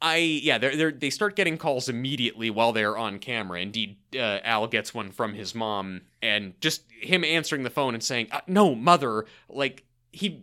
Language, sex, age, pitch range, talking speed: English, male, 30-49, 110-160 Hz, 190 wpm